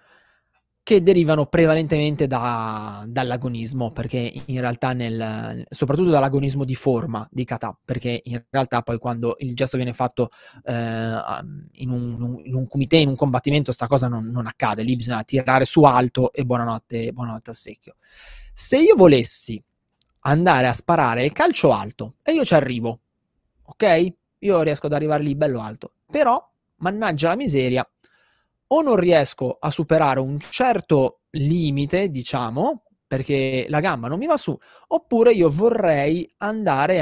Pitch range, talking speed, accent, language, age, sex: 125-160 Hz, 150 wpm, native, Italian, 20-39, male